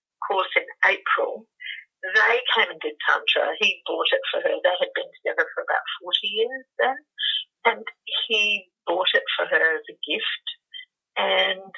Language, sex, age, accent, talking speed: English, female, 50-69, British, 165 wpm